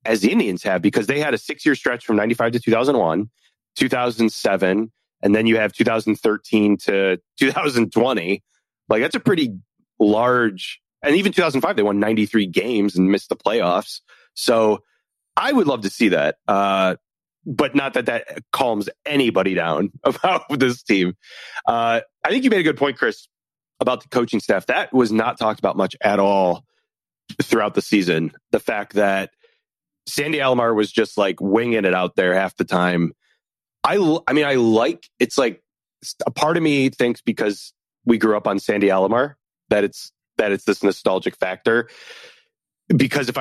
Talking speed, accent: 170 wpm, American